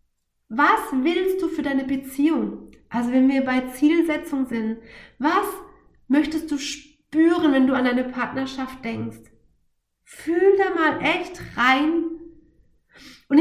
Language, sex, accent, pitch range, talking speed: German, female, German, 235-280 Hz, 125 wpm